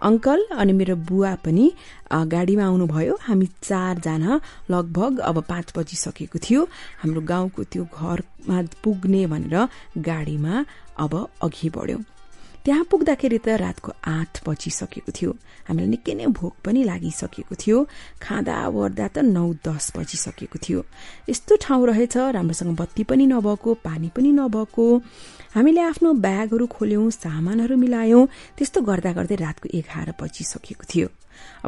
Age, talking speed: 30-49, 120 wpm